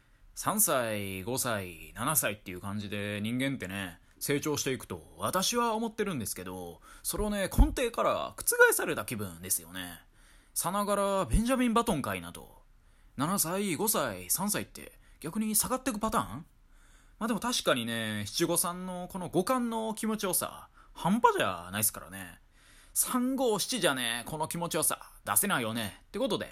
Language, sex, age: Japanese, male, 20-39